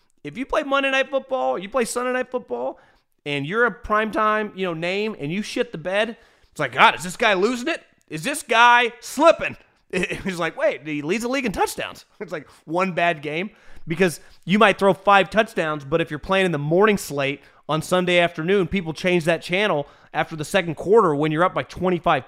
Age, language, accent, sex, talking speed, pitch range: 30-49, English, American, male, 215 wpm, 155-225 Hz